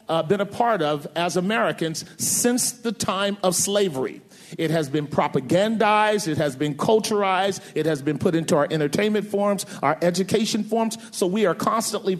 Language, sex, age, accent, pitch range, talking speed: English, male, 40-59, American, 175-215 Hz, 170 wpm